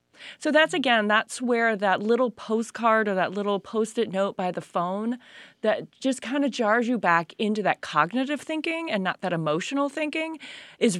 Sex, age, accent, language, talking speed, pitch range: female, 30-49, American, English, 180 wpm, 180-255 Hz